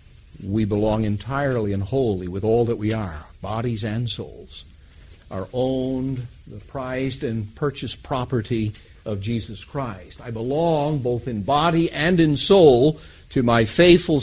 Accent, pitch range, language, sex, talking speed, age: American, 110-165 Hz, English, male, 145 wpm, 50-69